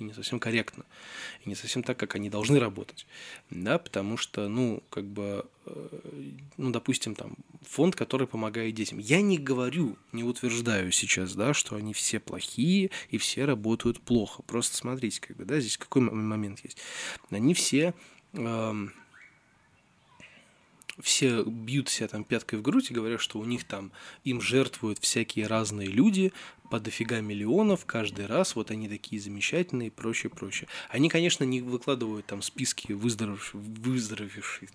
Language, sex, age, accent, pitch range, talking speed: Russian, male, 20-39, native, 105-135 Hz, 150 wpm